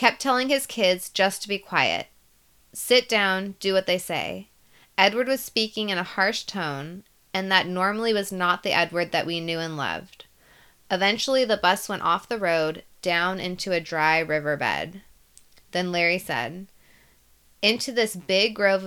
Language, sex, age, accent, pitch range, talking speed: English, female, 20-39, American, 165-205 Hz, 165 wpm